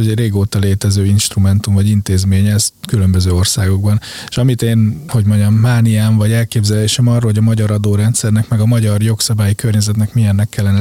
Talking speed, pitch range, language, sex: 160 wpm, 100-115 Hz, Hungarian, male